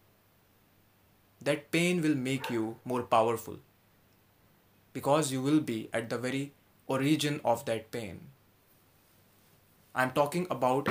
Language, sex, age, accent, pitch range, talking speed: English, male, 20-39, Indian, 105-135 Hz, 120 wpm